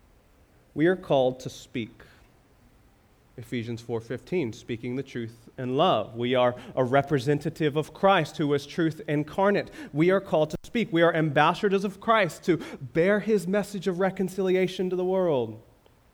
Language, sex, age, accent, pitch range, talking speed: English, male, 30-49, American, 125-185 Hz, 150 wpm